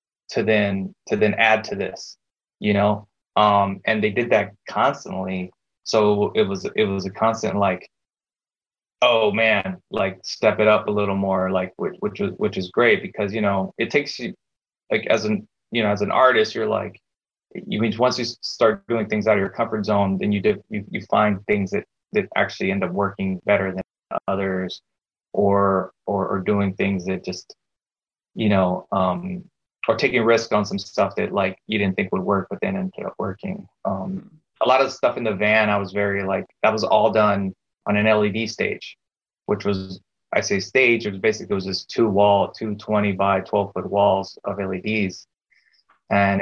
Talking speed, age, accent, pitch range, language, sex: 200 wpm, 20-39, American, 95-110 Hz, English, male